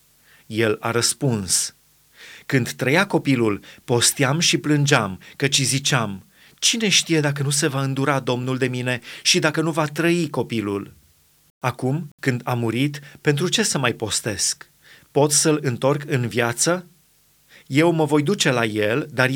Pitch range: 120-150 Hz